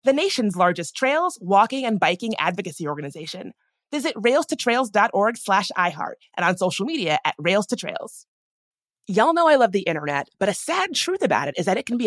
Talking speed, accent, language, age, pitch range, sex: 190 wpm, American, English, 30-49, 175-255 Hz, female